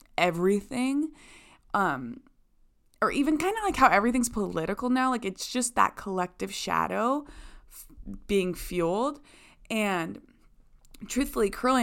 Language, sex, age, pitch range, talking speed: English, female, 20-39, 180-235 Hz, 110 wpm